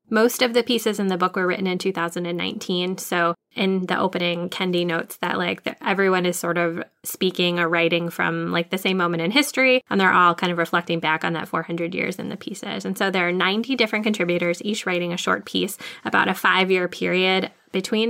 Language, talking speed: English, 215 wpm